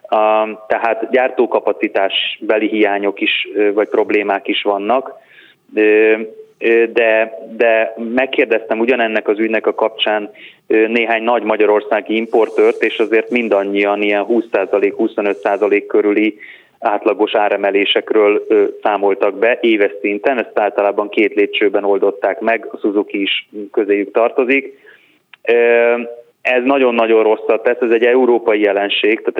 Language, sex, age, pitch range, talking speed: Hungarian, male, 30-49, 105-140 Hz, 110 wpm